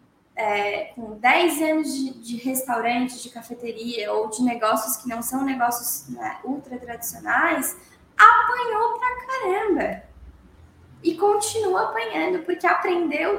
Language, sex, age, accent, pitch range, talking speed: Portuguese, female, 10-29, Brazilian, 260-345 Hz, 120 wpm